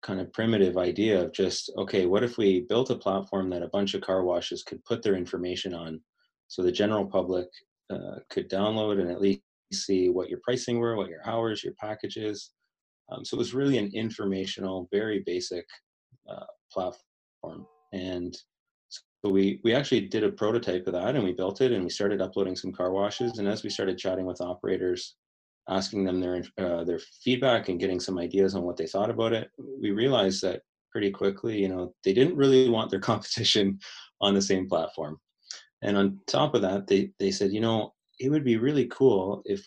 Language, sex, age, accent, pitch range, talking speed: English, male, 30-49, American, 90-105 Hz, 200 wpm